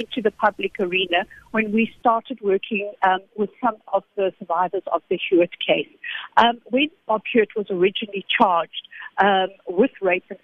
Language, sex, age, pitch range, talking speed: English, female, 60-79, 195-270 Hz, 165 wpm